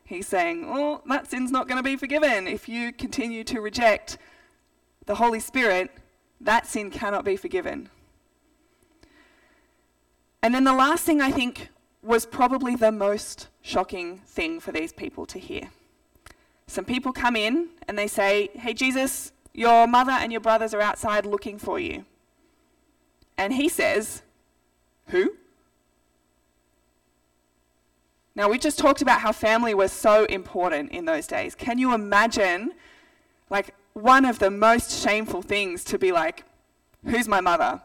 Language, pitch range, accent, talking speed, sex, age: English, 215-330 Hz, Australian, 150 wpm, female, 20-39